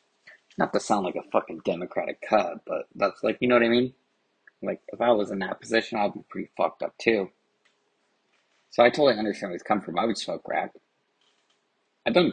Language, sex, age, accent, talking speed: English, male, 30-49, American, 210 wpm